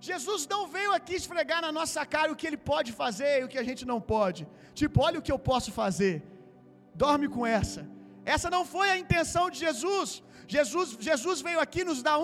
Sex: male